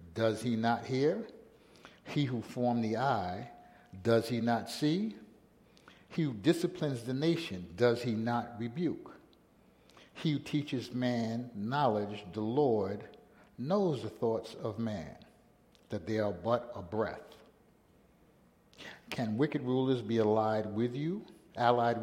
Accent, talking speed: American, 130 wpm